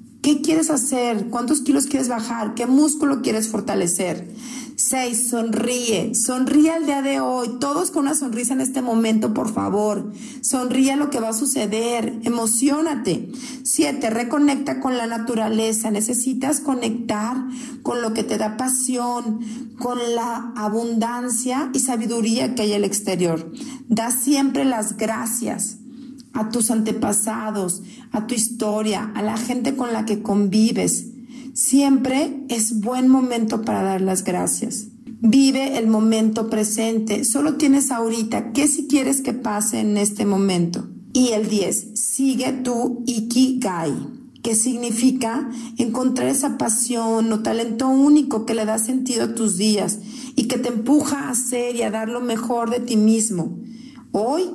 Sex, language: female, Spanish